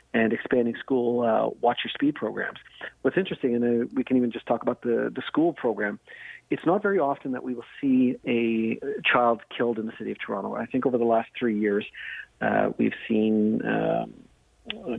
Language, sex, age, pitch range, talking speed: English, male, 40-59, 115-140 Hz, 190 wpm